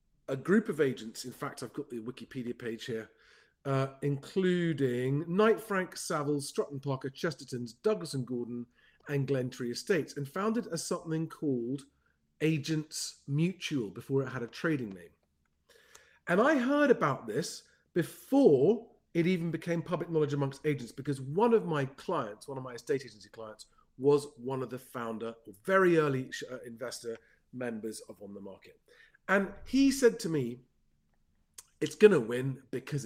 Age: 40-59